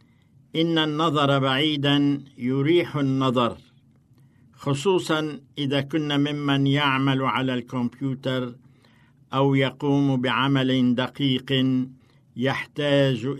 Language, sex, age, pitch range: Arabic, male, 60-79, 125-145 Hz